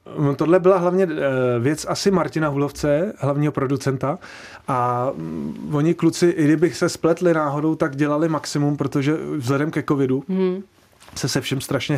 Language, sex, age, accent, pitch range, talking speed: Czech, male, 30-49, native, 125-145 Hz, 140 wpm